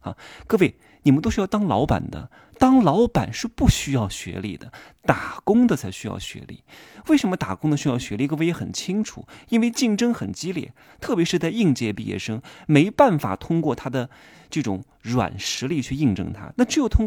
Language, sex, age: Chinese, male, 30-49